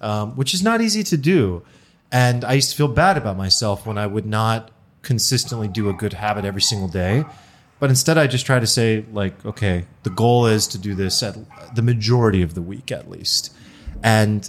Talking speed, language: 210 wpm, English